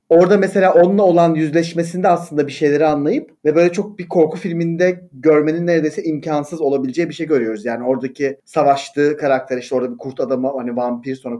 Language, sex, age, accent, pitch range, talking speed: Turkish, male, 40-59, native, 140-180 Hz, 180 wpm